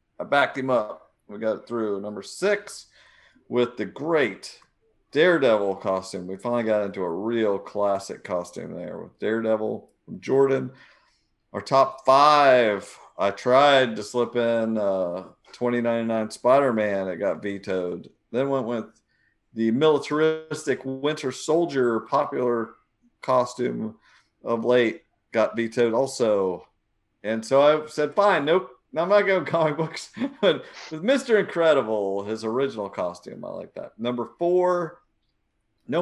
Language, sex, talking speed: English, male, 130 wpm